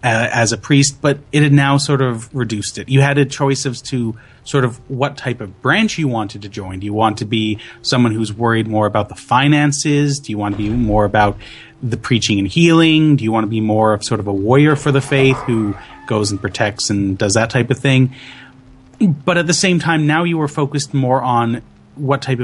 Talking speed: 235 wpm